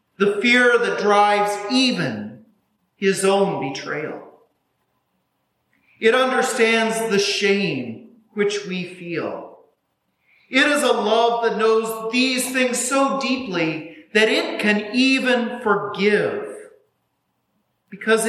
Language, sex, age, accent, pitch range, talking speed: English, male, 40-59, American, 195-245 Hz, 100 wpm